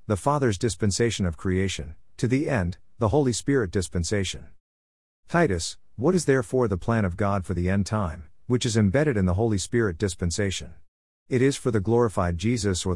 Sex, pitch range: male, 90-115 Hz